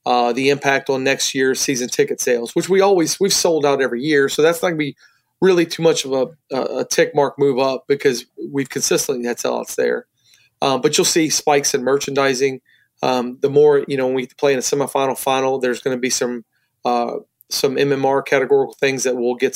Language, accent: English, American